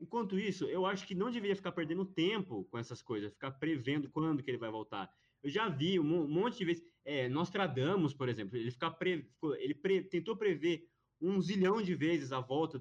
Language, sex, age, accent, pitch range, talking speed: Portuguese, male, 20-39, Brazilian, 130-190 Hz, 205 wpm